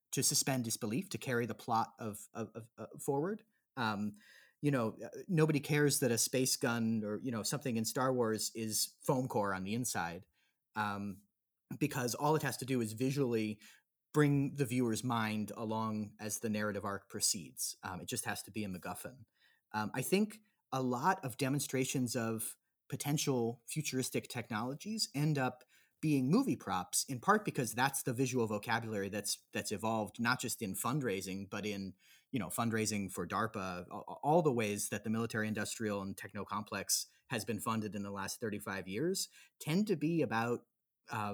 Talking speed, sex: 175 wpm, male